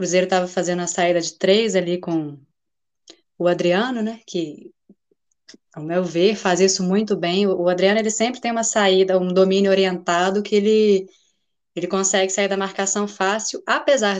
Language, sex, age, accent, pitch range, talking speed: Portuguese, female, 20-39, Brazilian, 180-220 Hz, 175 wpm